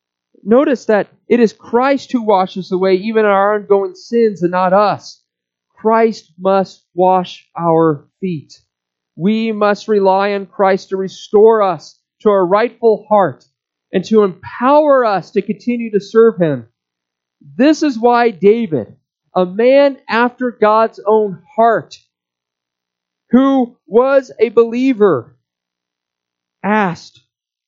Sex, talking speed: male, 120 wpm